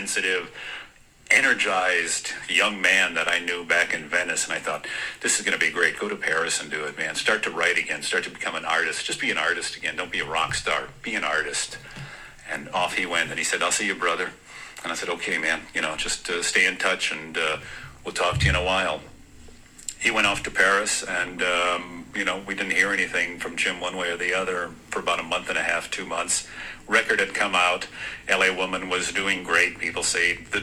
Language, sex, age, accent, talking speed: English, male, 50-69, American, 235 wpm